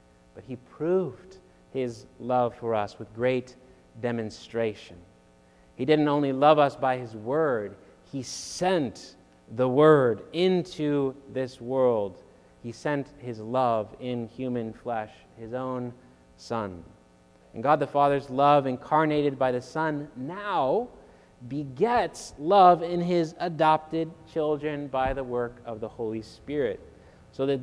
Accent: American